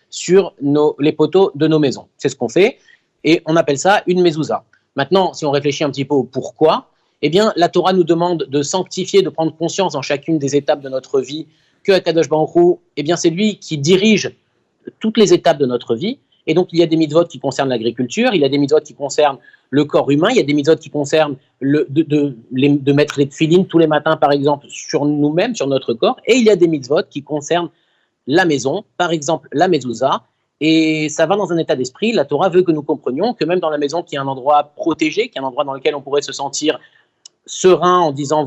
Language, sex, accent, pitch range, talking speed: French, male, French, 145-175 Hz, 240 wpm